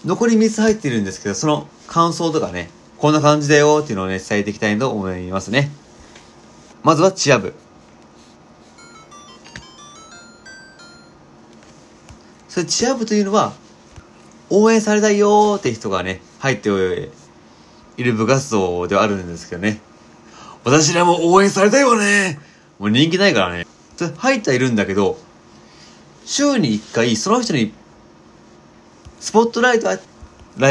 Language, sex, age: Japanese, male, 30-49